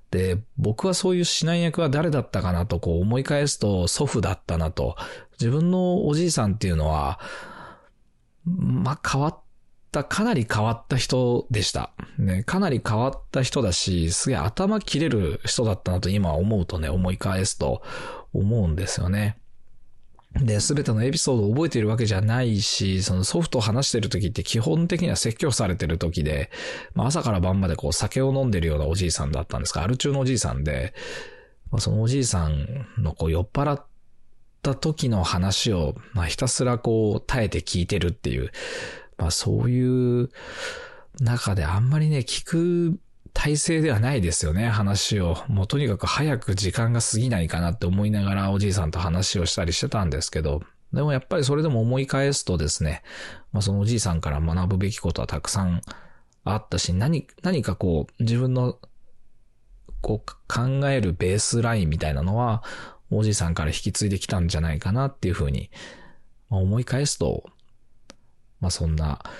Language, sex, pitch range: Japanese, male, 90-130 Hz